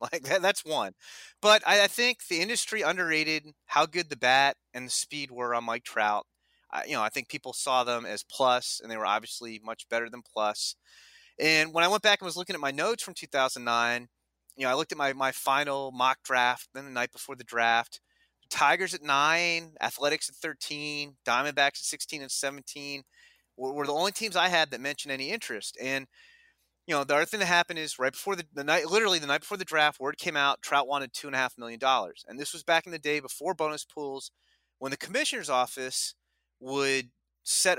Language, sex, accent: English, male, American